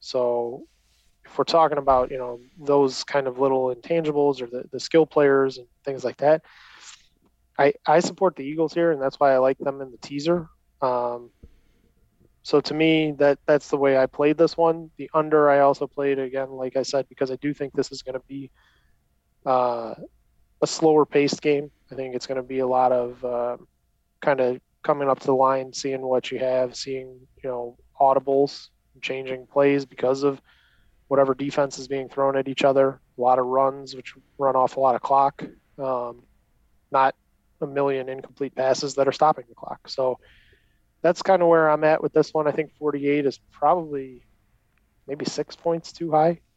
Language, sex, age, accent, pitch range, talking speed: English, male, 20-39, American, 130-150 Hz, 190 wpm